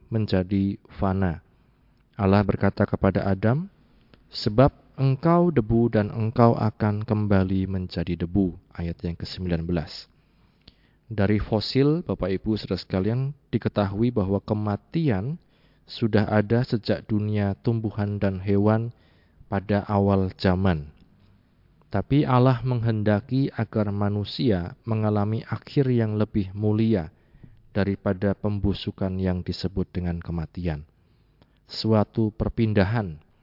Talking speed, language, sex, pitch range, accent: 100 wpm, Indonesian, male, 95-115 Hz, native